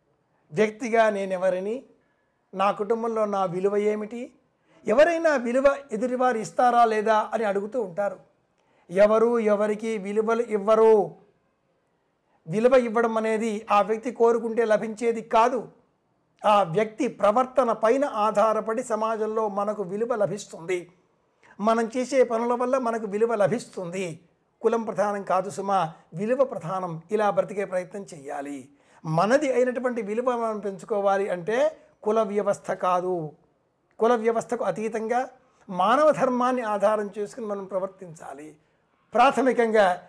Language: Telugu